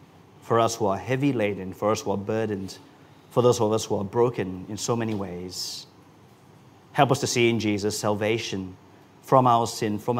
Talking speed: 195 wpm